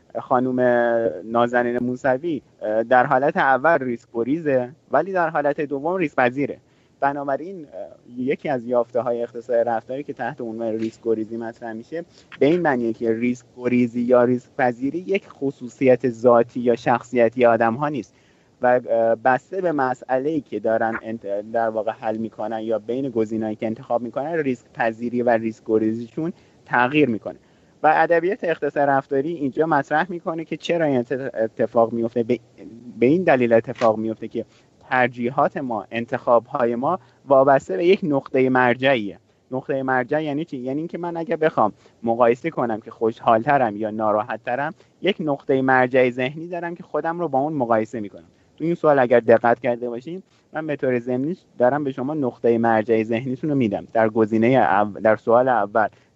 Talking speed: 155 wpm